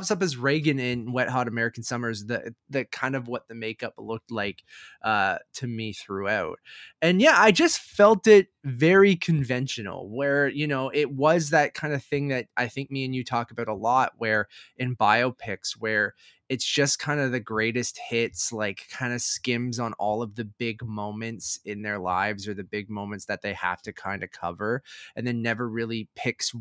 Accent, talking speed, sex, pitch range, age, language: American, 200 wpm, male, 110-140 Hz, 20-39, English